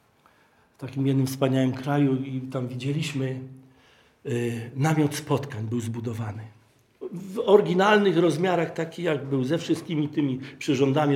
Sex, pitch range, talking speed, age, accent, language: male, 130-165 Hz, 125 wpm, 50-69, native, Polish